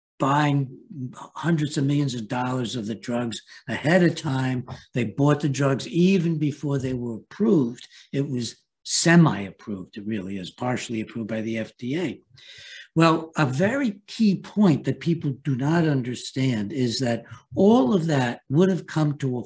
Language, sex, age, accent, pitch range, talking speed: English, male, 60-79, American, 120-160 Hz, 165 wpm